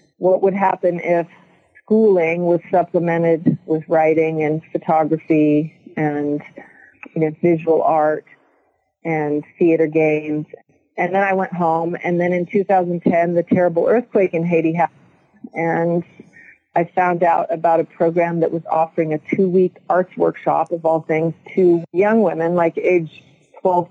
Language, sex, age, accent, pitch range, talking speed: English, female, 40-59, American, 165-190 Hz, 140 wpm